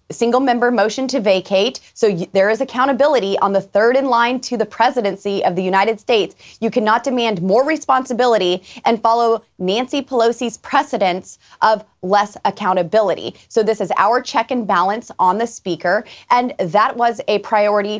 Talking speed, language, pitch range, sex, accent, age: 165 wpm, English, 195-250 Hz, female, American, 20-39